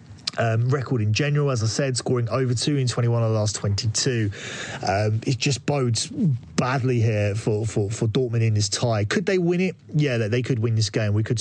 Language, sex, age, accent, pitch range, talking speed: English, male, 30-49, British, 115-140 Hz, 220 wpm